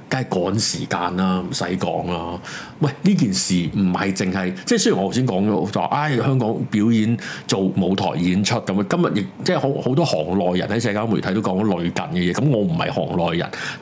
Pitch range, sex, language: 100-165 Hz, male, Chinese